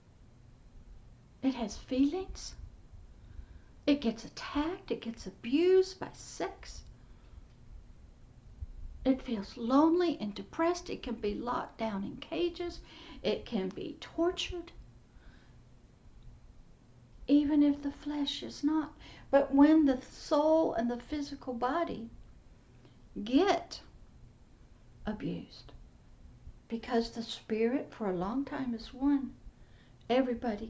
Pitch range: 225-285 Hz